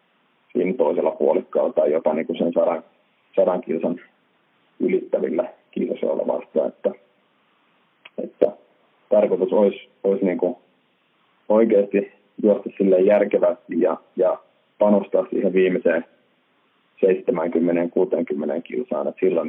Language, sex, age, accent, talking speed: Finnish, male, 30-49, native, 100 wpm